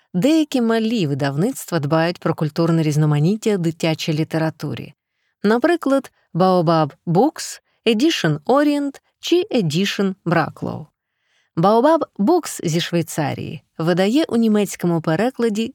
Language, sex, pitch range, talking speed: Ukrainian, female, 160-230 Hz, 95 wpm